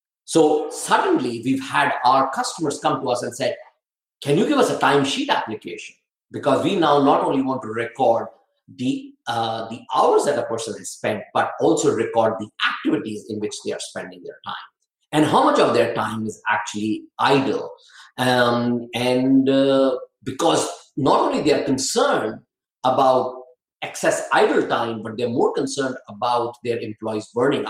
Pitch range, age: 115-150 Hz, 50-69